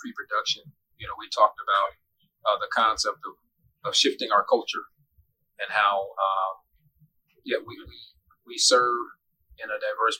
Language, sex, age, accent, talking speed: English, male, 40-59, American, 140 wpm